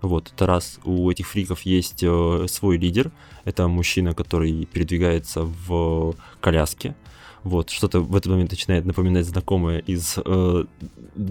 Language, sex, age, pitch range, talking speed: Russian, male, 20-39, 85-105 Hz, 145 wpm